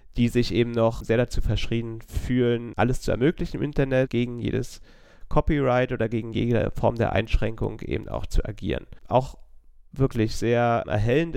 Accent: German